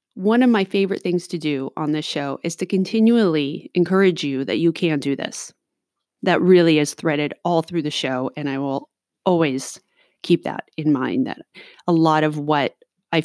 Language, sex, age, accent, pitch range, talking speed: English, female, 30-49, American, 160-225 Hz, 190 wpm